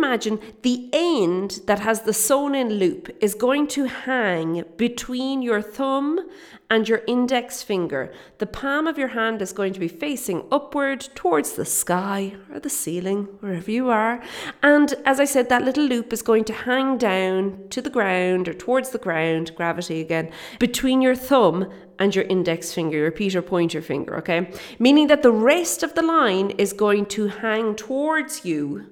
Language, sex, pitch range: English, female, 185-260 Hz